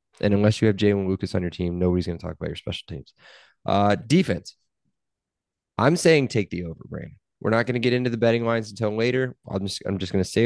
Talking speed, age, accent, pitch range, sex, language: 240 wpm, 20-39, American, 90-110 Hz, male, English